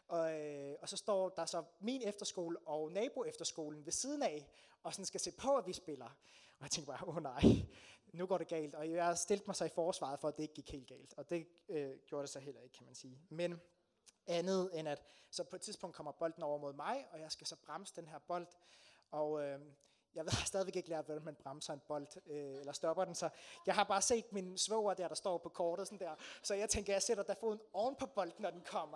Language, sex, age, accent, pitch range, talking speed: Danish, male, 30-49, native, 160-210 Hz, 255 wpm